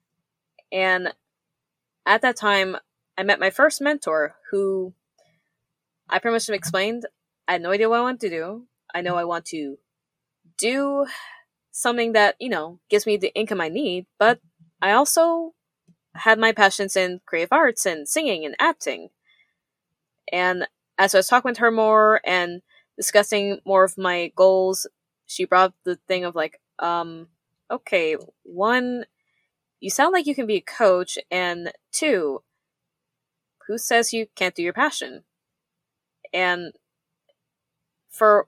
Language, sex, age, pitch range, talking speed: English, female, 10-29, 180-230 Hz, 150 wpm